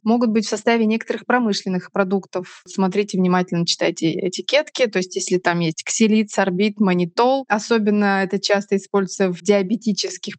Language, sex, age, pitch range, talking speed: Russian, female, 20-39, 185-230 Hz, 145 wpm